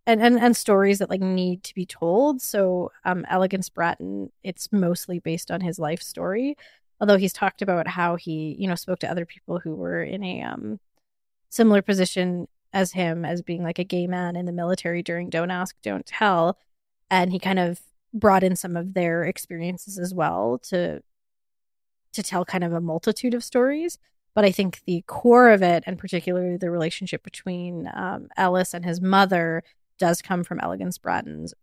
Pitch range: 170-195 Hz